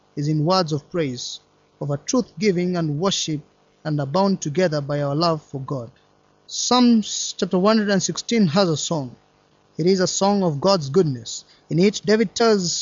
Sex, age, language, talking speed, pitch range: male, 20-39, English, 170 wpm, 155-195 Hz